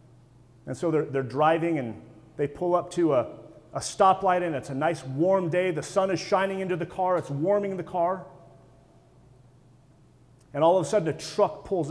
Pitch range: 130-170 Hz